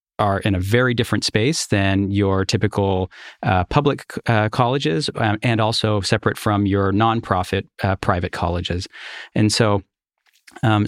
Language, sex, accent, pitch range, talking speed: English, male, American, 100-115 Hz, 145 wpm